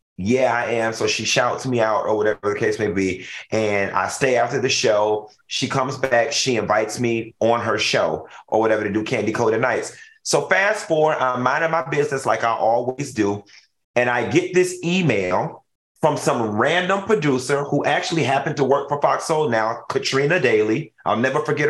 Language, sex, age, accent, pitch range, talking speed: English, male, 30-49, American, 115-155 Hz, 195 wpm